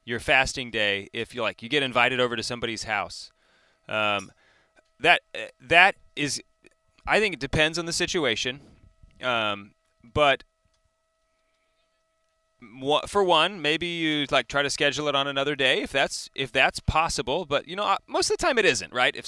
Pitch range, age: 125-185 Hz, 30-49